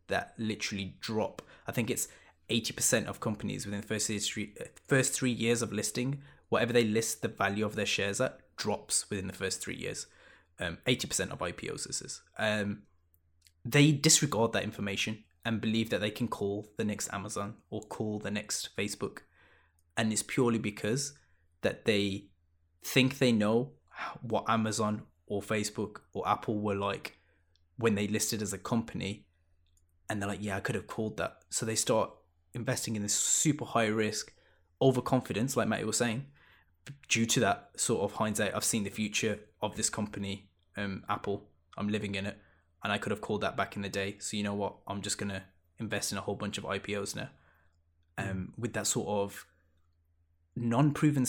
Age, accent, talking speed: 10-29, British, 180 wpm